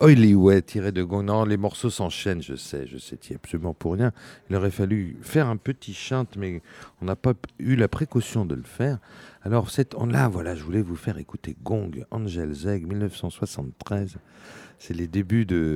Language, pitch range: French, 90-125 Hz